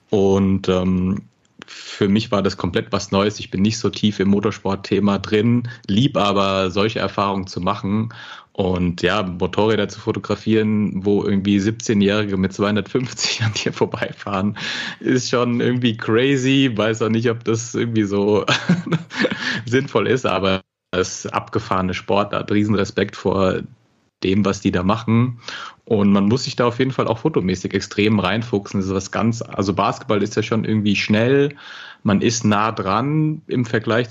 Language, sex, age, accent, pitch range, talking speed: German, male, 30-49, German, 100-115 Hz, 160 wpm